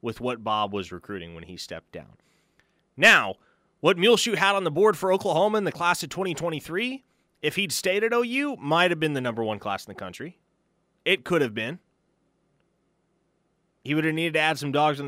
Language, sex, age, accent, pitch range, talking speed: English, male, 30-49, American, 110-155 Hz, 205 wpm